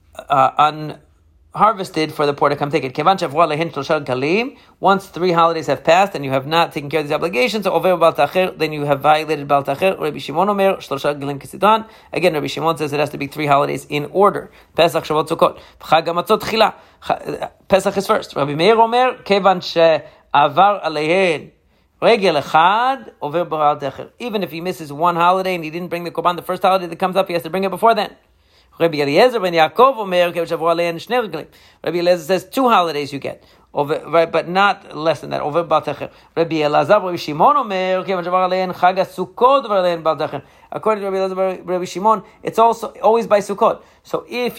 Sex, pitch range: male, 150-190 Hz